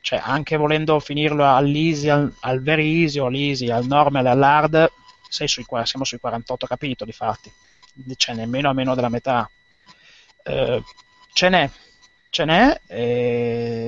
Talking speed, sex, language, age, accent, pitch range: 135 wpm, male, Italian, 30-49, native, 125-155 Hz